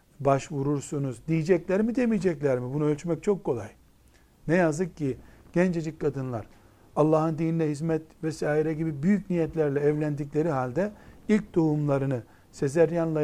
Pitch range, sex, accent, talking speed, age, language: 140-175 Hz, male, native, 120 wpm, 60-79, Turkish